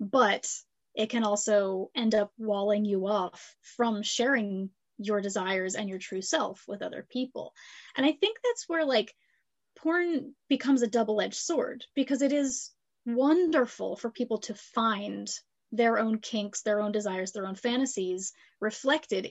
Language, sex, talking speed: English, female, 150 wpm